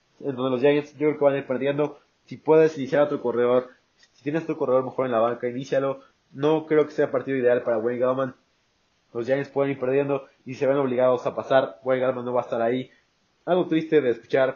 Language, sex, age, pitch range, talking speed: Spanish, male, 20-39, 130-150 Hz, 235 wpm